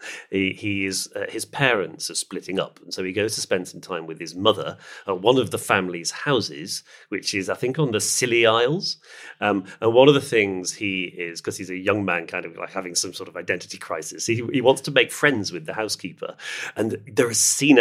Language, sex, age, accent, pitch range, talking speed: English, male, 40-59, British, 90-120 Hz, 235 wpm